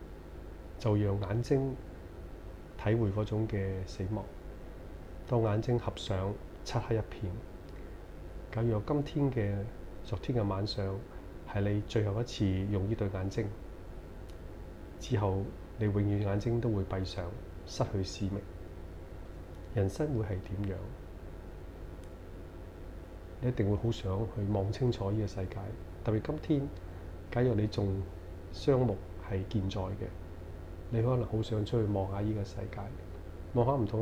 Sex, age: male, 30-49